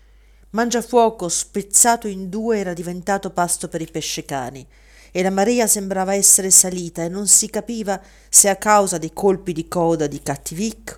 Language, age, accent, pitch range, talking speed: Italian, 50-69, native, 155-195 Hz, 160 wpm